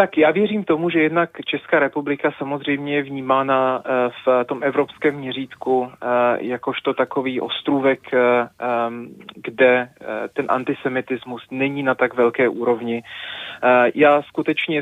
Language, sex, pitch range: Czech, male, 130-145 Hz